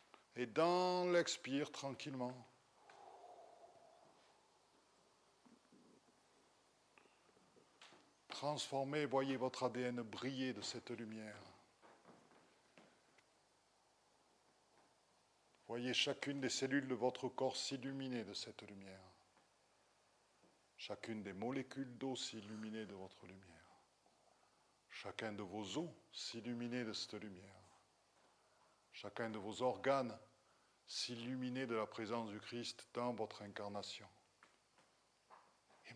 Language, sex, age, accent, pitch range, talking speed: French, male, 50-69, French, 110-135 Hz, 90 wpm